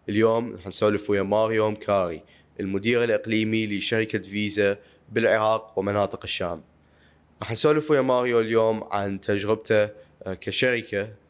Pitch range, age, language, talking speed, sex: 95-110 Hz, 20-39, Arabic, 110 wpm, male